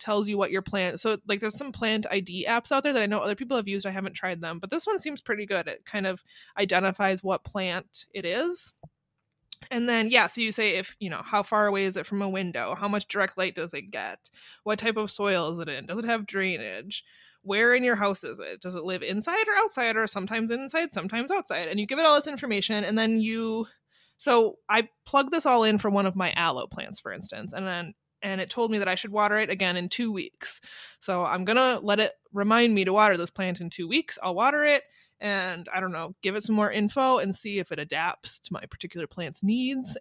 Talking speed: 250 wpm